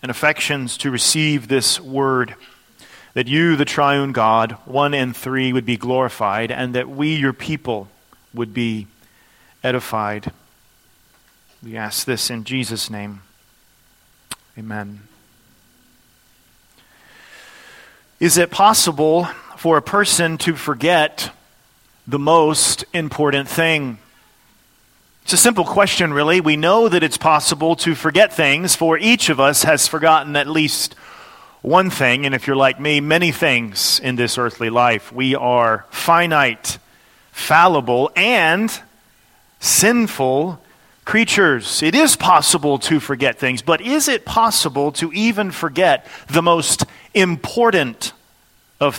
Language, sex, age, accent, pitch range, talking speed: English, male, 40-59, American, 125-170 Hz, 125 wpm